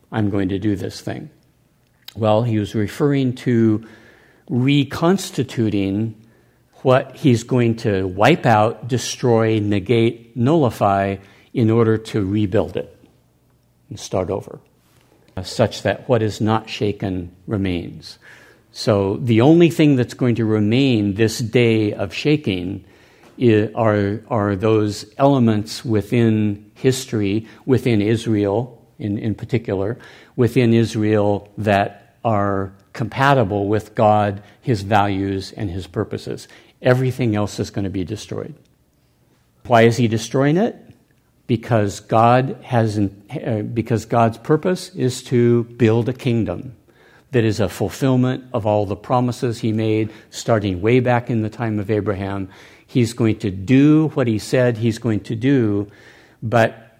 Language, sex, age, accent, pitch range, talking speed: English, male, 60-79, American, 105-125 Hz, 130 wpm